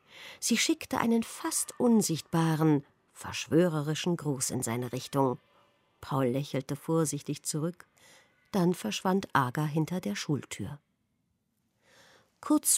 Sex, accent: female, German